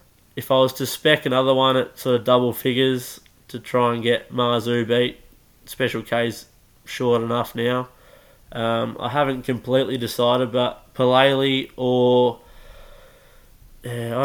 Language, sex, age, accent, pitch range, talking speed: English, male, 20-39, Australian, 115-125 Hz, 135 wpm